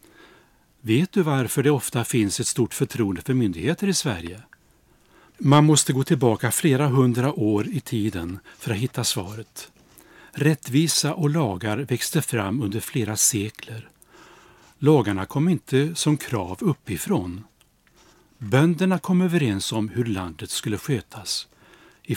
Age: 60-79